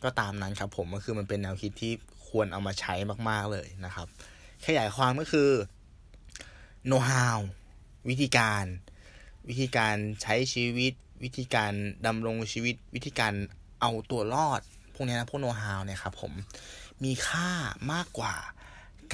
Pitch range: 95-120 Hz